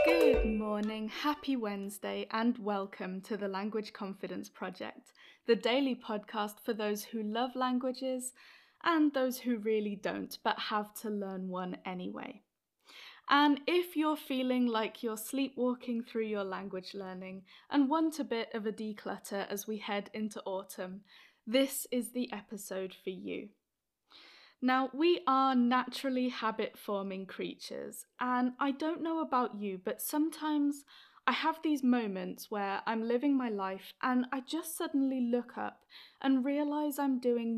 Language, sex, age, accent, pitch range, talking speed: English, female, 20-39, British, 210-270 Hz, 145 wpm